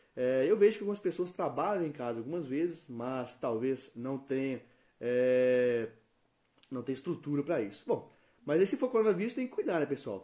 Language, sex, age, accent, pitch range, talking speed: Portuguese, male, 20-39, Brazilian, 130-185 Hz, 190 wpm